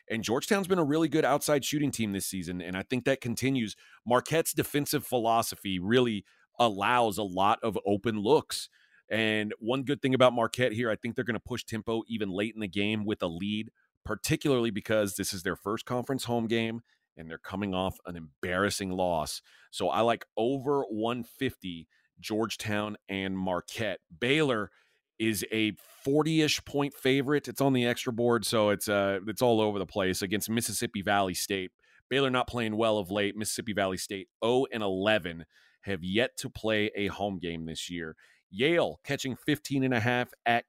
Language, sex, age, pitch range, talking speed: English, male, 30-49, 100-130 Hz, 180 wpm